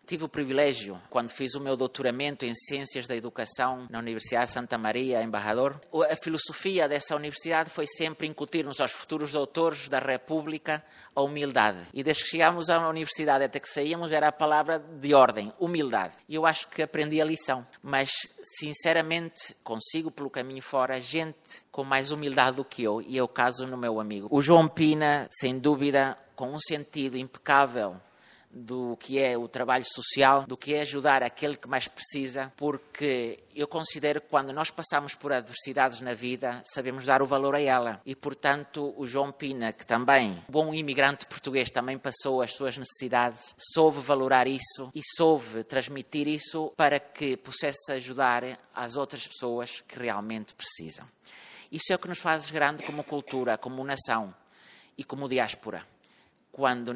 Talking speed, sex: 170 wpm, male